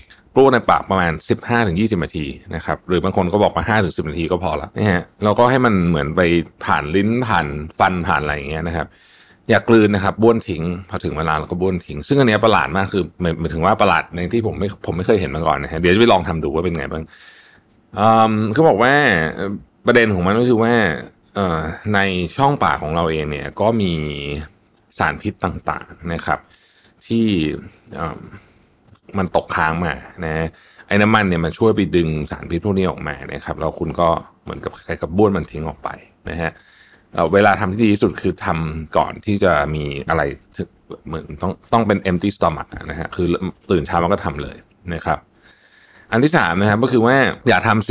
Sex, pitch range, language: male, 80-105 Hz, Thai